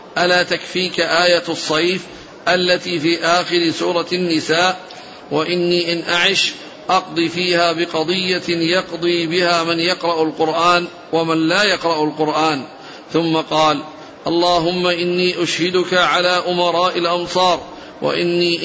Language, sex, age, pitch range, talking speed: Arabic, male, 50-69, 165-180 Hz, 105 wpm